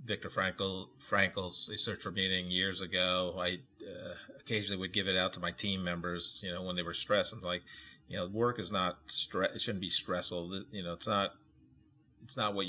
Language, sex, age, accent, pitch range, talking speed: English, male, 40-59, American, 85-105 Hz, 210 wpm